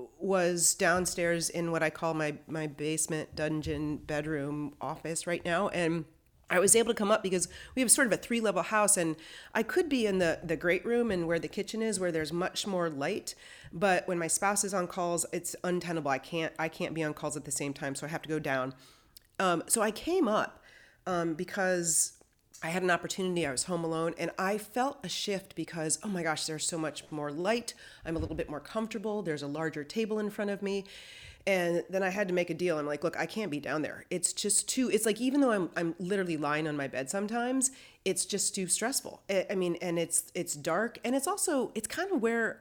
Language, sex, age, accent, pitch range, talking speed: English, female, 30-49, American, 160-205 Hz, 230 wpm